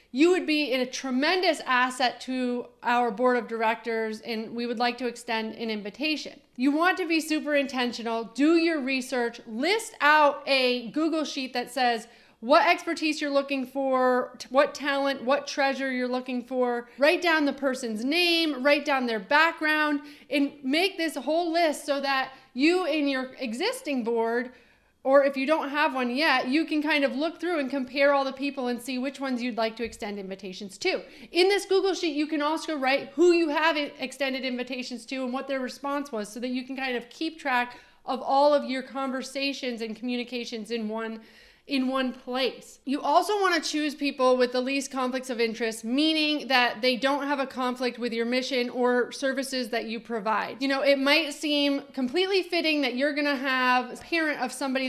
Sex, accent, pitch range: female, American, 245-290 Hz